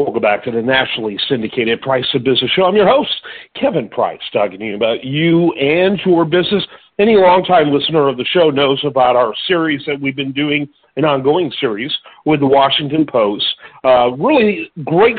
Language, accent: English, American